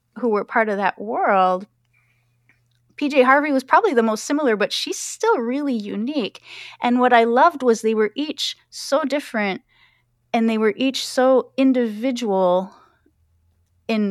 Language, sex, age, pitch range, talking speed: English, female, 30-49, 195-255 Hz, 150 wpm